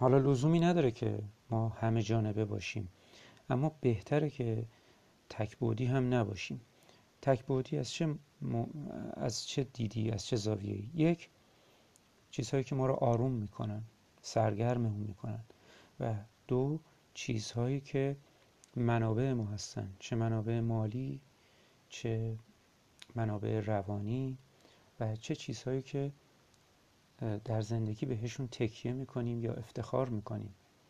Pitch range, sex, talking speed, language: 110-130 Hz, male, 115 wpm, Persian